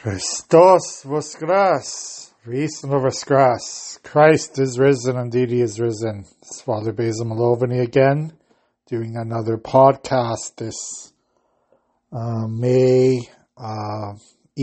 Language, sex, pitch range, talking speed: English, male, 115-130 Hz, 80 wpm